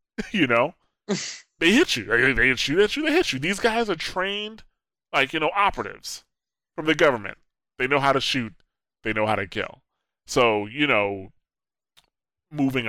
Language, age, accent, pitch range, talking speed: English, 20-39, American, 100-125 Hz, 175 wpm